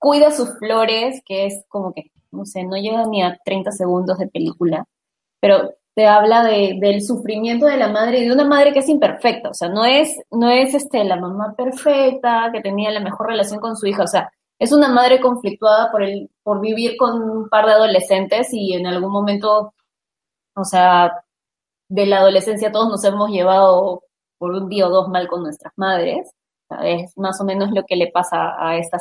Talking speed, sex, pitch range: 200 wpm, female, 195-240 Hz